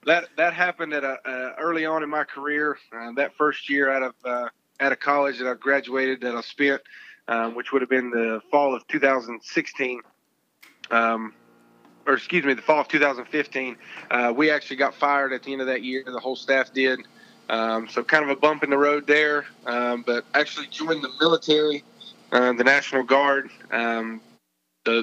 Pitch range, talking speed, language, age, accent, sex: 125-145 Hz, 195 wpm, English, 30-49, American, male